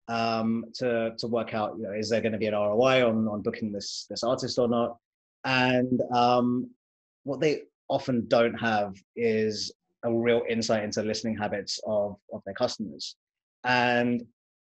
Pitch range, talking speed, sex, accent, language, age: 110-125 Hz, 165 wpm, male, British, English, 30-49